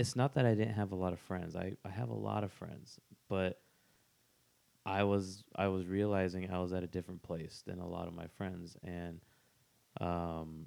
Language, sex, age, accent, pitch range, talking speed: English, male, 20-39, American, 90-105 Hz, 210 wpm